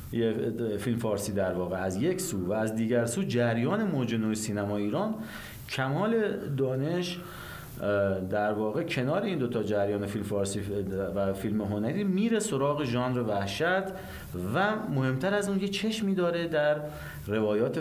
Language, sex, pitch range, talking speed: Persian, male, 95-130 Hz, 145 wpm